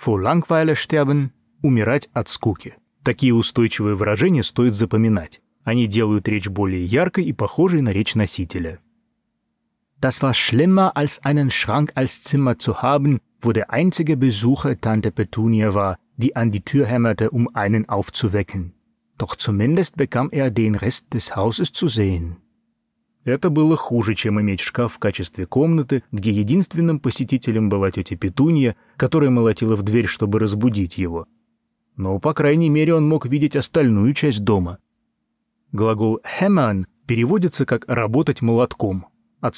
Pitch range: 110-150 Hz